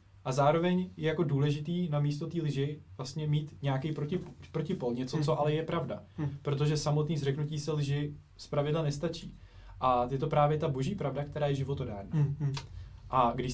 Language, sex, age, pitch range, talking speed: Czech, male, 20-39, 130-160 Hz, 165 wpm